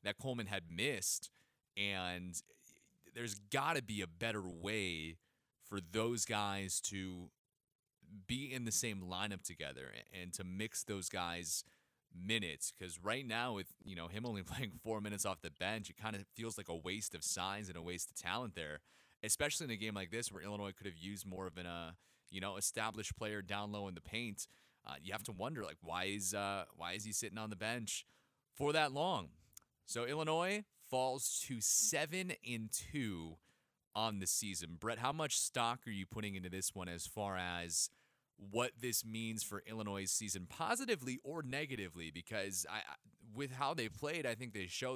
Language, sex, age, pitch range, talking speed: English, male, 30-49, 90-115 Hz, 190 wpm